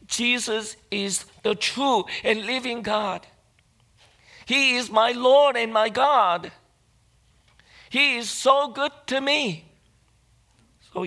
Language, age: English, 50-69